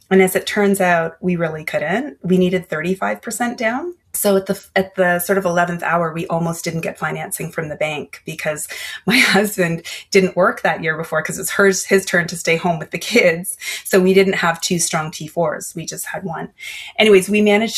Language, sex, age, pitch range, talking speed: English, female, 30-49, 160-195 Hz, 210 wpm